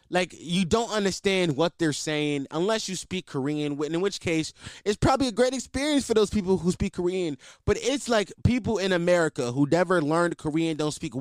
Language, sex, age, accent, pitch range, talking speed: English, male, 20-39, American, 140-200 Hz, 200 wpm